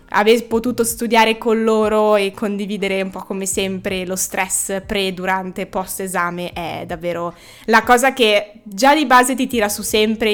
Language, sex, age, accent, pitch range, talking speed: Italian, female, 20-39, native, 190-230 Hz, 155 wpm